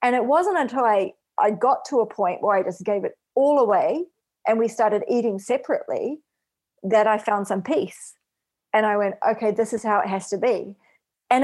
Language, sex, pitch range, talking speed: English, female, 190-240 Hz, 205 wpm